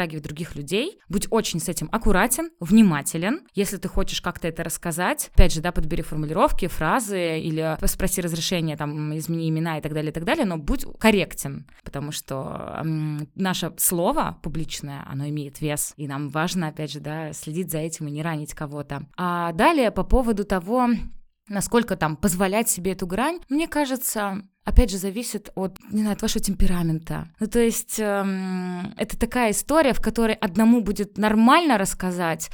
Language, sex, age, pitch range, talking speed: Russian, female, 20-39, 165-230 Hz, 170 wpm